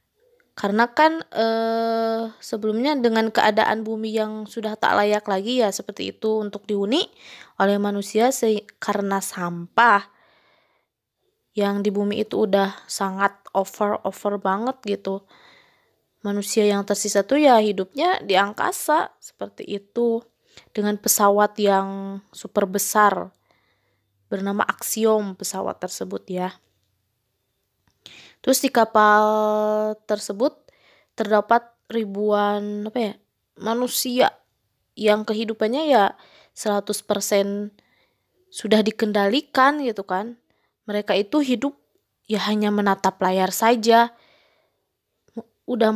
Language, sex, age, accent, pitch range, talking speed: Indonesian, female, 20-39, native, 200-225 Hz, 100 wpm